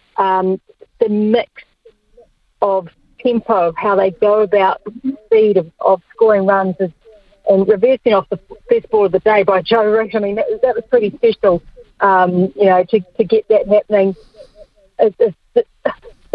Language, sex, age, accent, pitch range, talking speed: English, female, 40-59, Australian, 195-255 Hz, 170 wpm